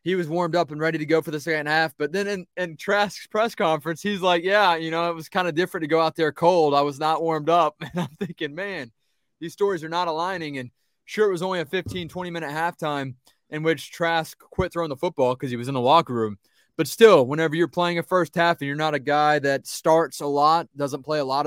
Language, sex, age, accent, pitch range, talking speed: English, male, 20-39, American, 150-175 Hz, 255 wpm